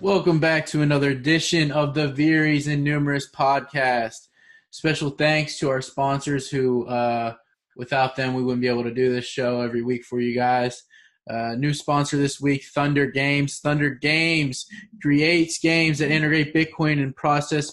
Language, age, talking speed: English, 20-39, 165 wpm